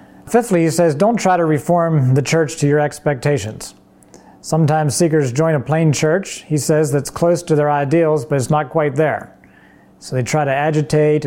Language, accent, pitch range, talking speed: English, American, 135-160 Hz, 185 wpm